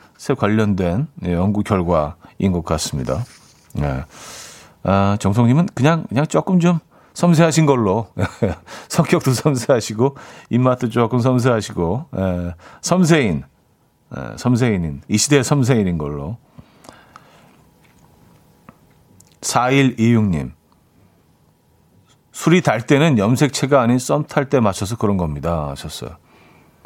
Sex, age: male, 40-59